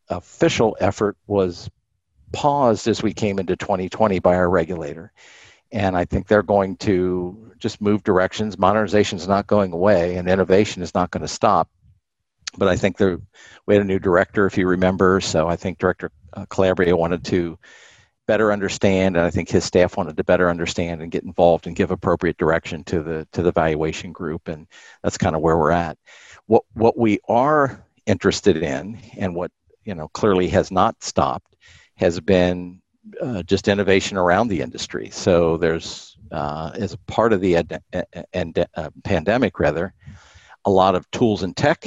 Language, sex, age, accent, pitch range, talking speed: English, male, 50-69, American, 90-105 Hz, 180 wpm